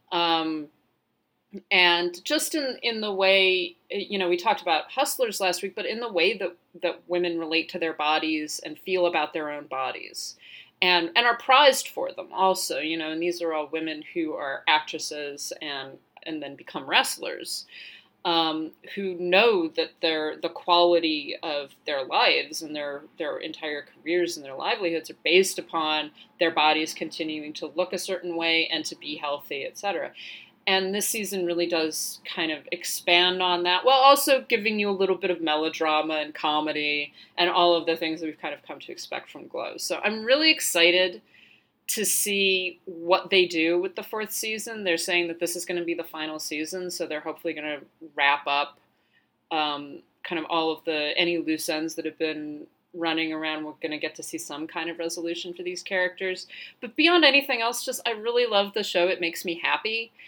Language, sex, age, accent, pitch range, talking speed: English, female, 30-49, American, 160-190 Hz, 195 wpm